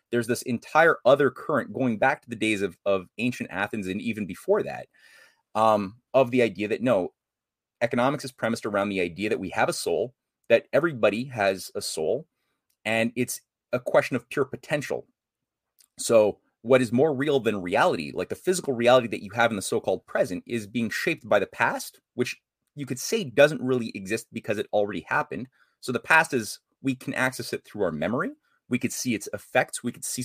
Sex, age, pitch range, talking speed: male, 30-49, 110-140 Hz, 200 wpm